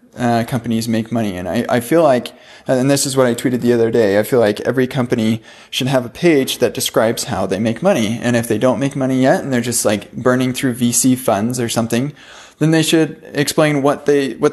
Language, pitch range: English, 120-150 Hz